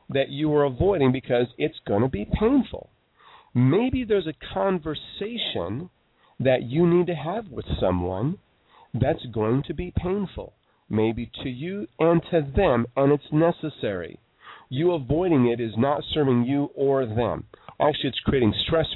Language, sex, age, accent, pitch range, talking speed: English, male, 40-59, American, 120-175 Hz, 150 wpm